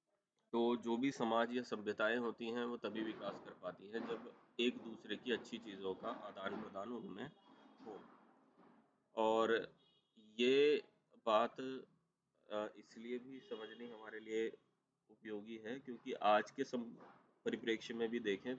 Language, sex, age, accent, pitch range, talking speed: Hindi, male, 30-49, native, 105-120 Hz, 140 wpm